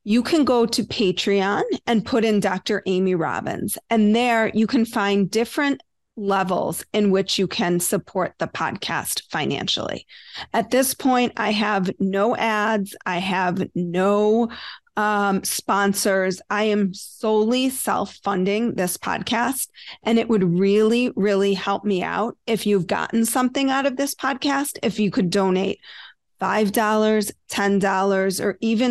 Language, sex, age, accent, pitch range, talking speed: English, female, 40-59, American, 190-235 Hz, 140 wpm